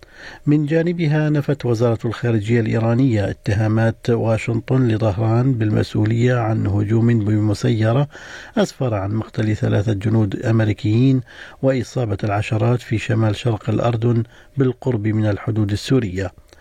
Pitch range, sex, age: 115-150 Hz, male, 50-69